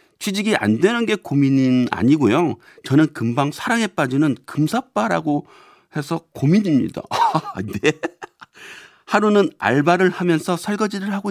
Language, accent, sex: Korean, native, male